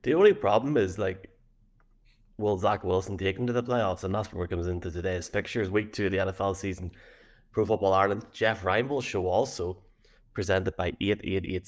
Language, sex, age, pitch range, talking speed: English, male, 20-39, 90-105 Hz, 190 wpm